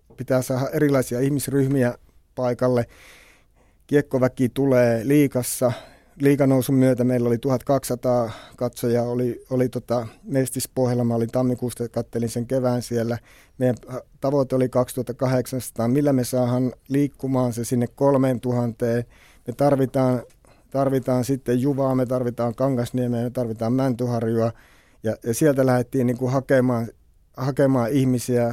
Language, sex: Finnish, male